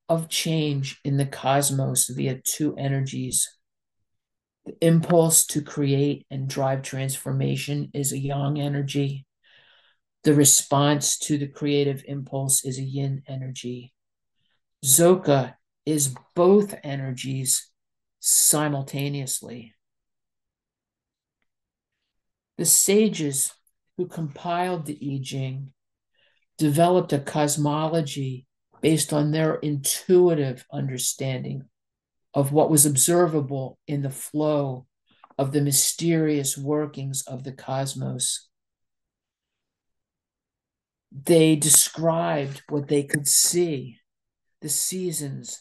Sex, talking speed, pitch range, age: male, 95 wpm, 135-150 Hz, 50-69